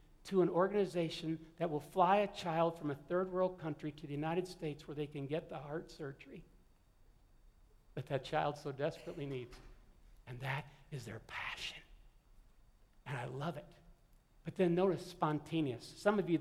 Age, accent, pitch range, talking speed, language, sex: 60-79, American, 150-200 Hz, 165 wpm, English, male